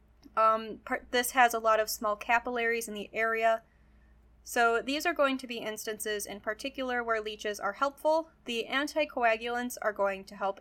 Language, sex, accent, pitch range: English, female, American, 205-270 Hz